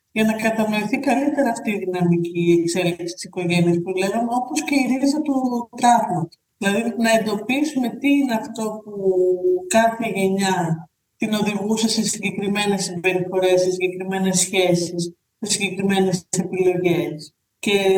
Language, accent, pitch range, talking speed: Greek, native, 190-230 Hz, 130 wpm